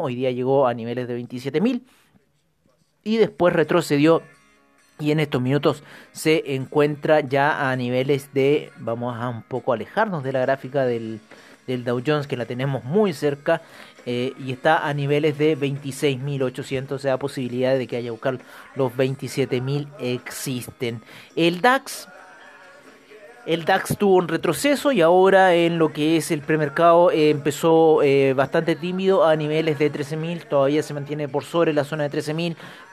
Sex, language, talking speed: male, Spanish, 155 wpm